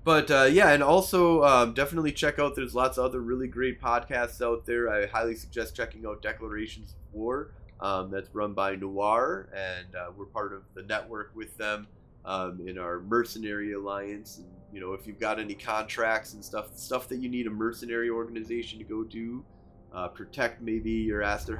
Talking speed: 195 wpm